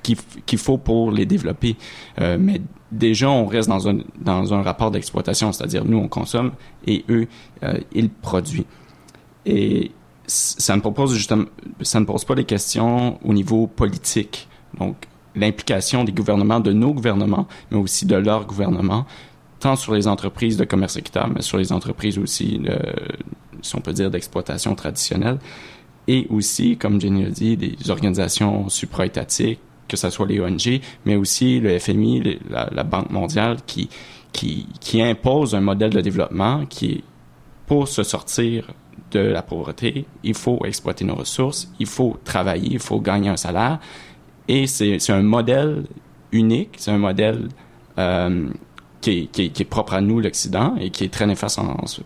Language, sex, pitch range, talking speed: French, male, 100-120 Hz, 160 wpm